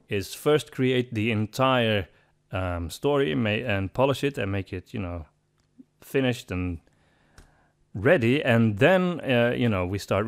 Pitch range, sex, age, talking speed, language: 100-140 Hz, male, 30-49, 160 wpm, English